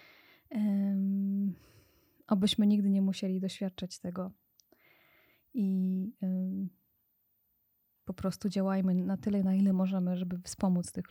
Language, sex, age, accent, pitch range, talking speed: Polish, female, 20-39, native, 180-200 Hz, 95 wpm